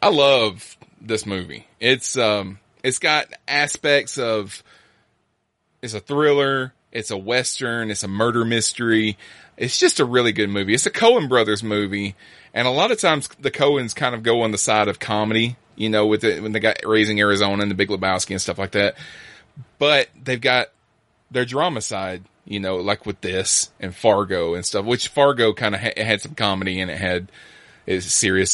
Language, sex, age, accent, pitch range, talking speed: English, male, 20-39, American, 100-125 Hz, 195 wpm